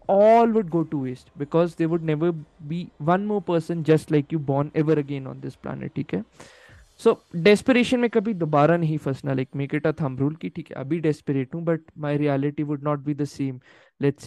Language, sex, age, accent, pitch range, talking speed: Hindi, male, 20-39, native, 145-210 Hz, 225 wpm